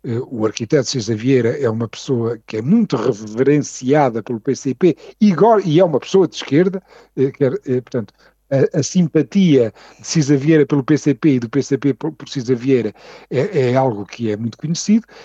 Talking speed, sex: 175 wpm, male